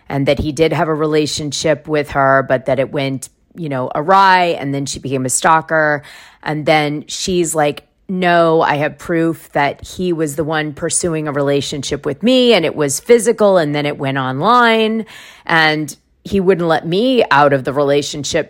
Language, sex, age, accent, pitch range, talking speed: English, female, 30-49, American, 155-195 Hz, 190 wpm